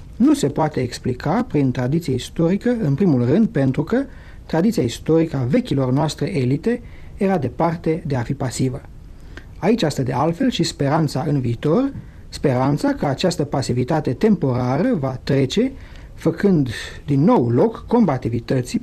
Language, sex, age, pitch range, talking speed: Romanian, male, 60-79, 125-195 Hz, 140 wpm